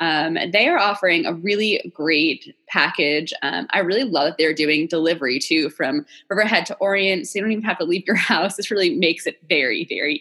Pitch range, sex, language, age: 170-240 Hz, female, English, 20-39